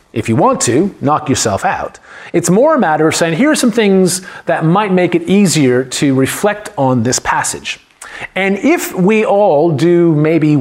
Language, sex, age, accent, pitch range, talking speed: English, male, 40-59, American, 130-190 Hz, 185 wpm